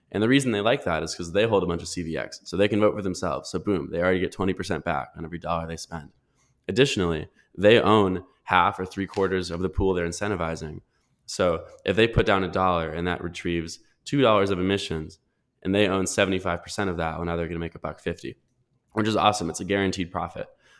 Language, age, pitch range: English, 20-39, 85-105 Hz